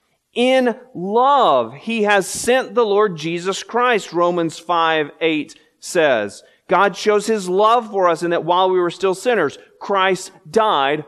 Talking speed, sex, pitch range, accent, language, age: 150 wpm, male, 140-190 Hz, American, English, 40-59